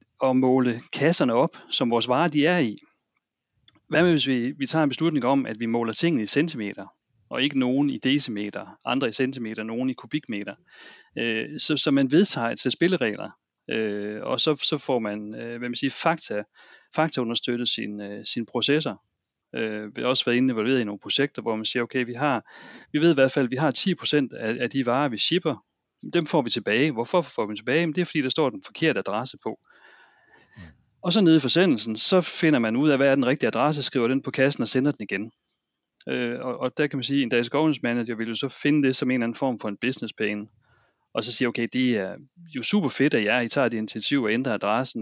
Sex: male